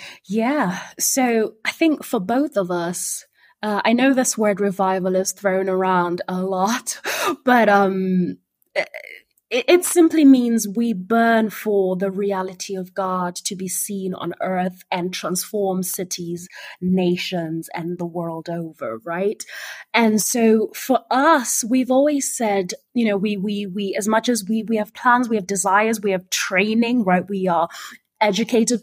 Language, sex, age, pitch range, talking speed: English, female, 20-39, 185-230 Hz, 155 wpm